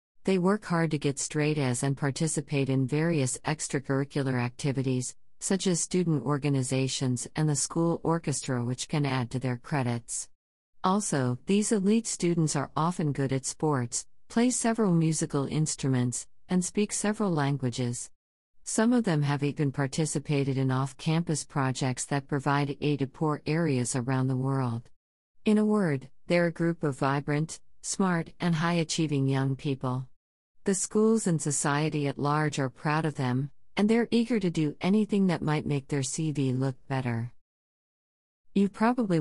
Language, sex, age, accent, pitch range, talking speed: English, female, 50-69, American, 130-165 Hz, 155 wpm